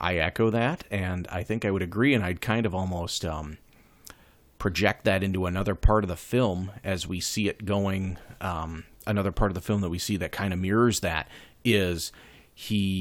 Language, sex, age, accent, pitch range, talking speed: English, male, 40-59, American, 90-110 Hz, 205 wpm